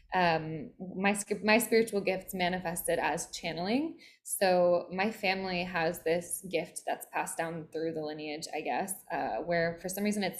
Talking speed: 160 wpm